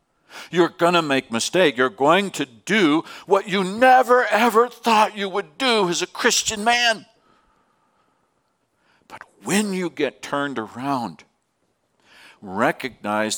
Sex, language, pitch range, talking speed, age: male, English, 115-165 Hz, 130 wpm, 60-79